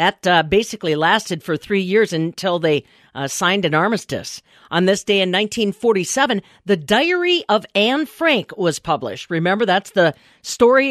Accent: American